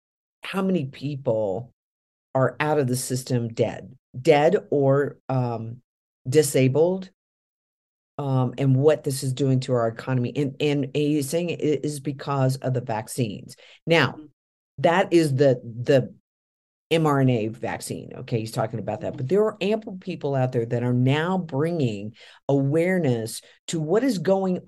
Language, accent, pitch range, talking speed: English, American, 130-160 Hz, 145 wpm